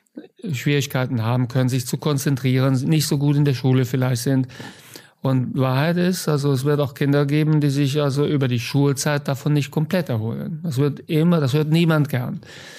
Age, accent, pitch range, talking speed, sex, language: 50-69, German, 130-145 Hz, 190 wpm, male, German